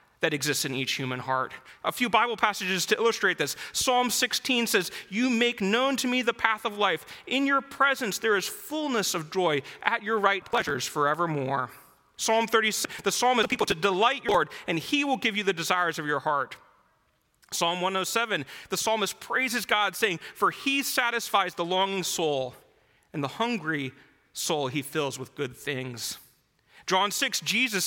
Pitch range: 140-225 Hz